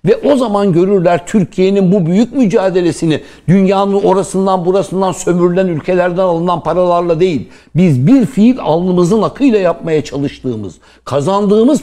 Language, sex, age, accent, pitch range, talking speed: Turkish, male, 60-79, native, 155-200 Hz, 120 wpm